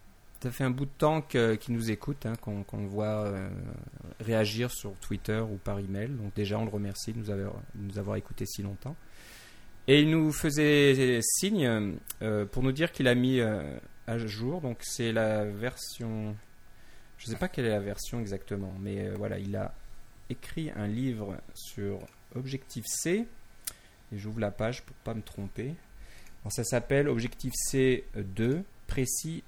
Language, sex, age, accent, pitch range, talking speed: French, male, 30-49, French, 100-125 Hz, 175 wpm